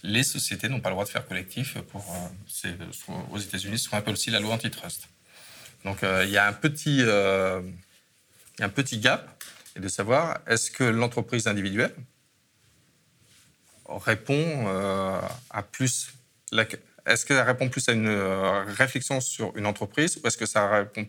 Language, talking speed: French, 170 wpm